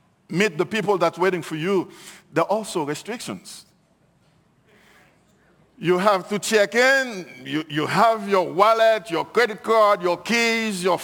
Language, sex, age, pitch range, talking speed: English, male, 50-69, 170-220 Hz, 145 wpm